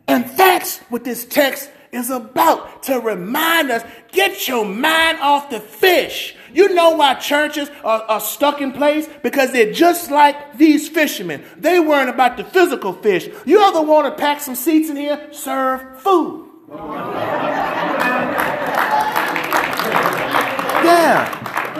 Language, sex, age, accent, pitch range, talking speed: English, male, 40-59, American, 255-340 Hz, 135 wpm